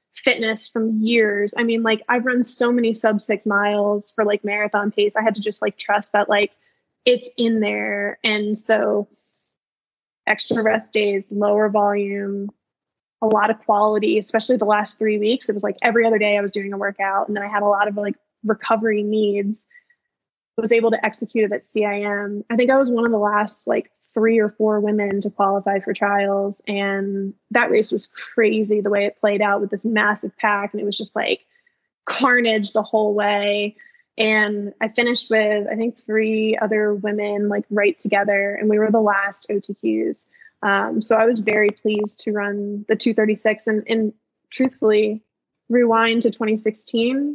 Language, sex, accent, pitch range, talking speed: English, female, American, 205-225 Hz, 185 wpm